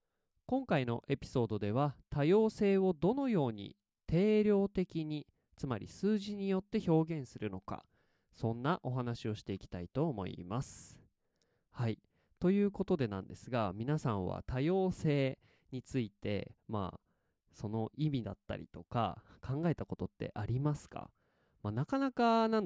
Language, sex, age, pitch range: Japanese, male, 20-39, 110-185 Hz